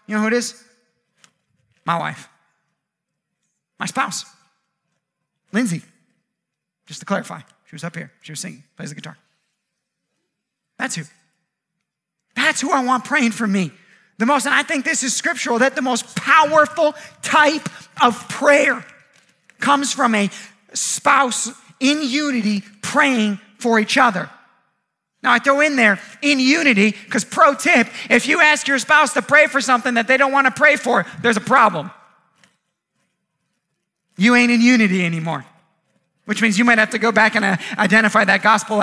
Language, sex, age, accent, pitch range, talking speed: English, male, 30-49, American, 180-255 Hz, 160 wpm